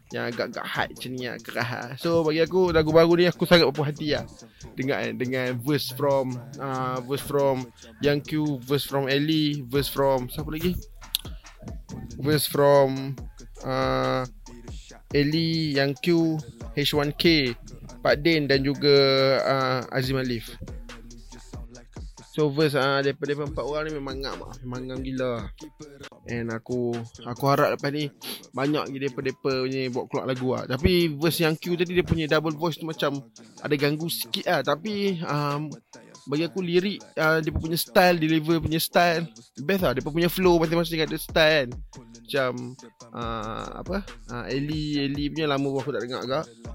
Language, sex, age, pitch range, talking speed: Malay, male, 20-39, 130-160 Hz, 160 wpm